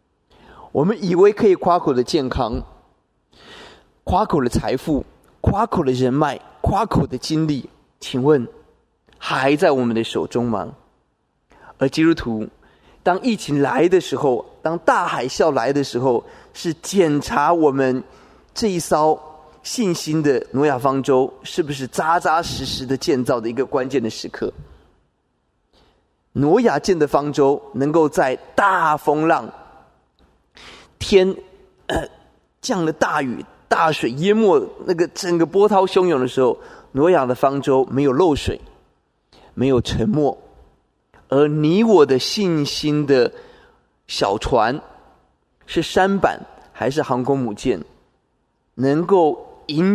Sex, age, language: male, 20-39, Chinese